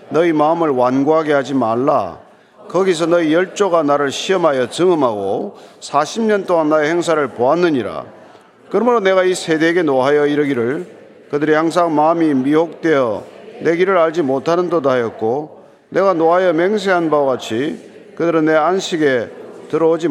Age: 40-59